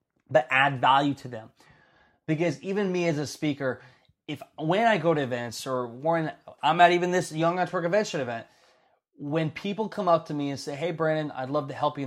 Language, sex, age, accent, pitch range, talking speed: English, male, 20-39, American, 135-170 Hz, 210 wpm